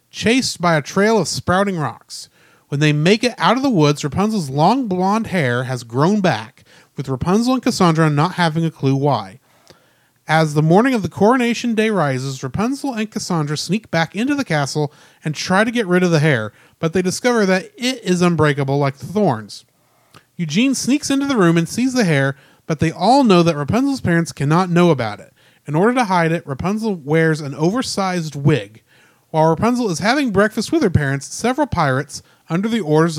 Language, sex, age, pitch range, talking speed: English, male, 30-49, 145-215 Hz, 195 wpm